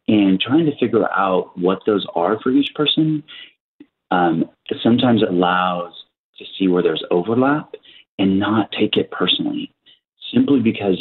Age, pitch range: 30-49, 90-140 Hz